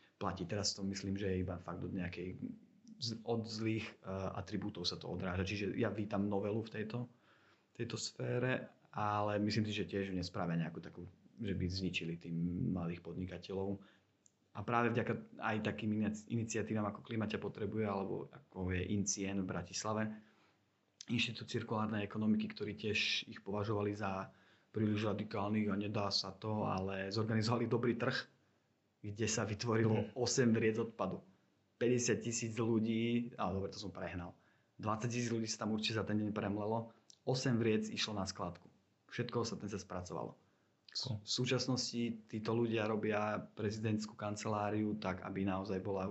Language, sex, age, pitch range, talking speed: Slovak, male, 30-49, 95-110 Hz, 150 wpm